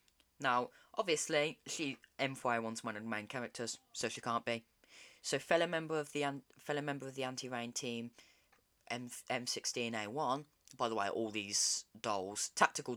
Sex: female